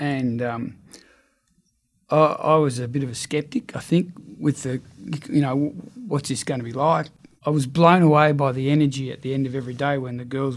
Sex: male